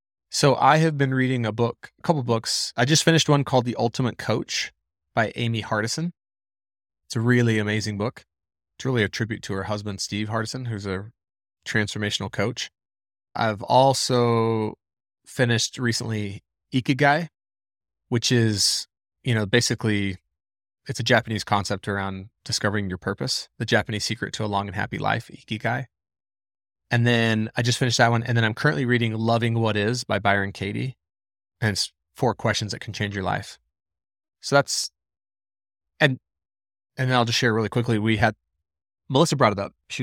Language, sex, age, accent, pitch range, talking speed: English, male, 20-39, American, 100-120 Hz, 170 wpm